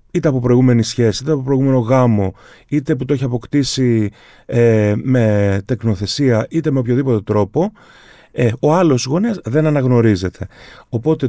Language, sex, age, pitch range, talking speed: Greek, male, 30-49, 115-145 Hz, 145 wpm